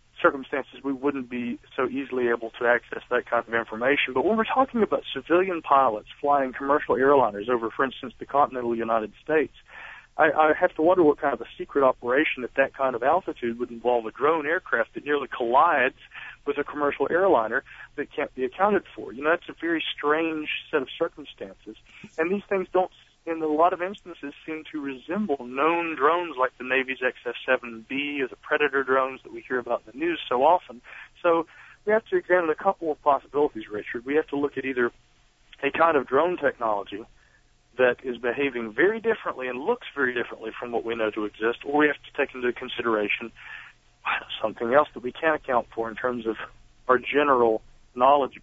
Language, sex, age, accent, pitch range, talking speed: English, male, 40-59, American, 120-160 Hz, 200 wpm